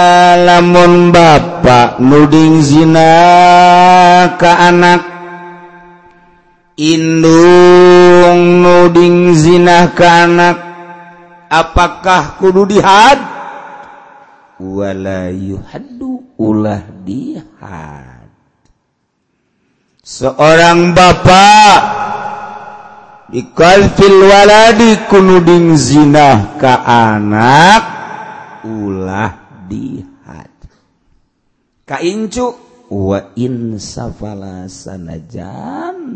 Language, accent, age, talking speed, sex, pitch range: Indonesian, native, 50-69, 55 wpm, male, 130-175 Hz